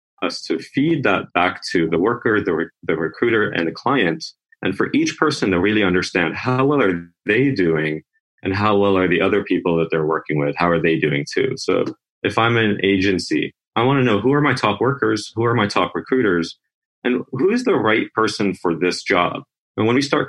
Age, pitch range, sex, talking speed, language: 30-49, 85-105 Hz, male, 220 wpm, English